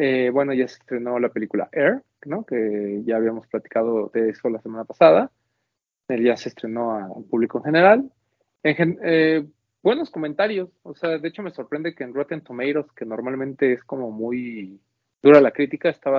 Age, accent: 30-49, Mexican